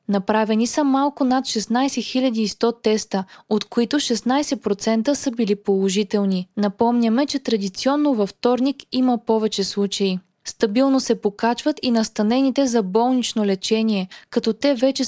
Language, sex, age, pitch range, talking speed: Bulgarian, female, 20-39, 205-255 Hz, 125 wpm